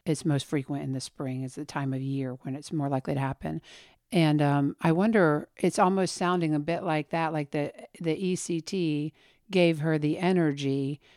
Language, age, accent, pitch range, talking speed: English, 50-69, American, 150-170 Hz, 205 wpm